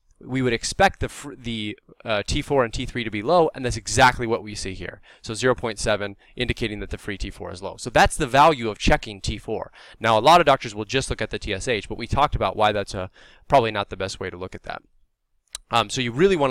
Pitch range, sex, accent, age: 105-130 Hz, male, American, 20-39